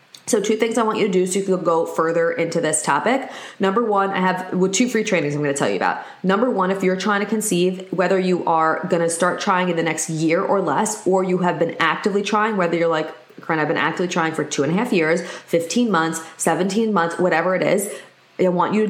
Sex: female